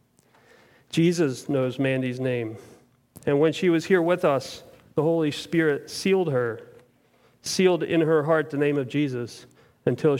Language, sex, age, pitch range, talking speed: English, male, 40-59, 125-155 Hz, 145 wpm